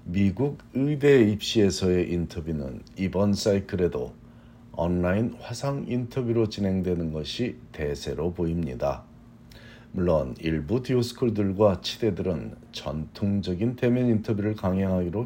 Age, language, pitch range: 50-69, Korean, 90-120 Hz